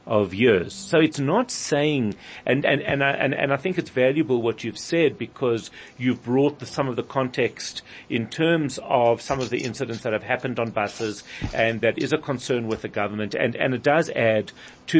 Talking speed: 210 wpm